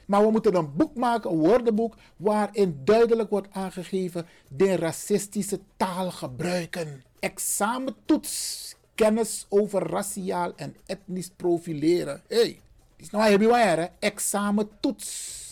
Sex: male